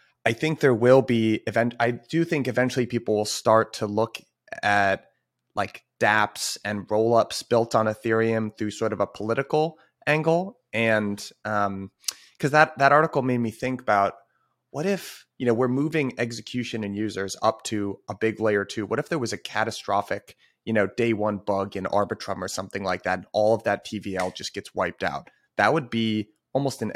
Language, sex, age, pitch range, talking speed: English, male, 30-49, 105-125 Hz, 190 wpm